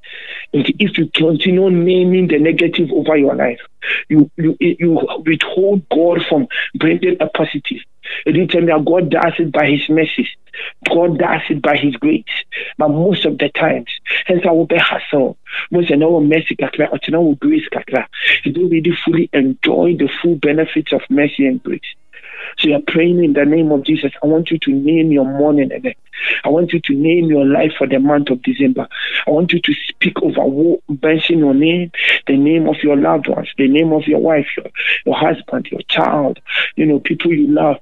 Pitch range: 150-175 Hz